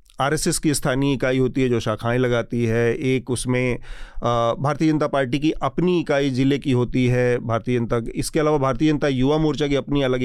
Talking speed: 195 wpm